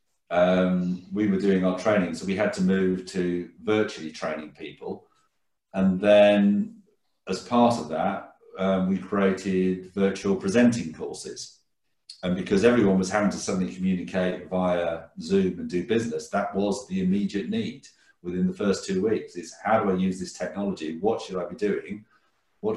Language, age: English, 40-59